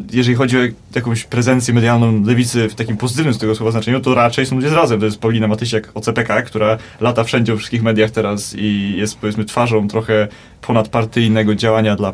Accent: native